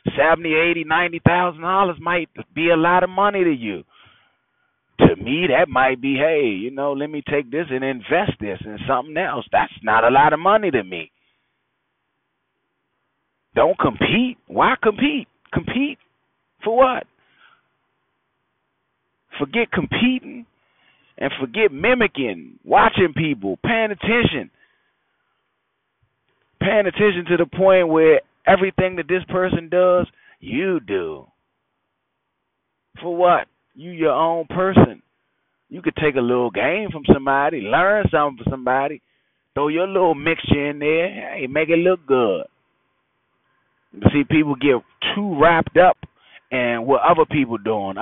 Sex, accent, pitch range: male, American, 140-195 Hz